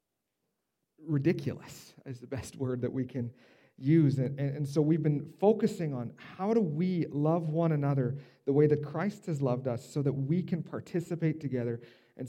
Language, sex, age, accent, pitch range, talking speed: English, male, 40-59, American, 140-180 Hz, 180 wpm